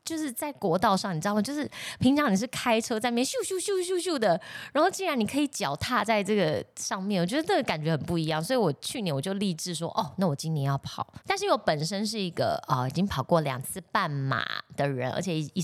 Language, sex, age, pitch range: Chinese, female, 20-39, 155-220 Hz